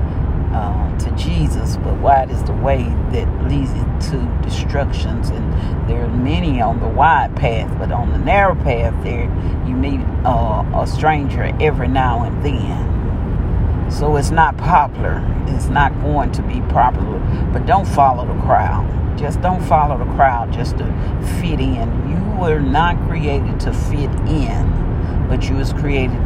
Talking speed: 160 wpm